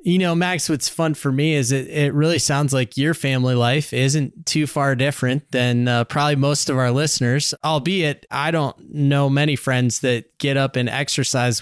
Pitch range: 130-170 Hz